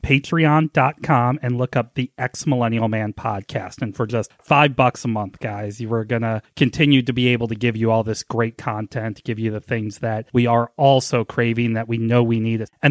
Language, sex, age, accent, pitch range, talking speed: English, male, 30-49, American, 115-140 Hz, 220 wpm